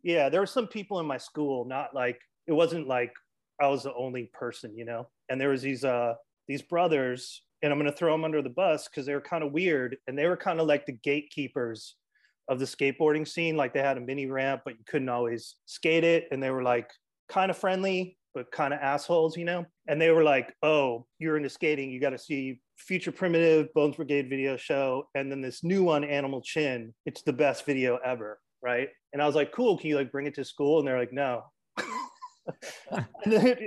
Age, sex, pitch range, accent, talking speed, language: 30-49, male, 130-160 Hz, American, 225 wpm, English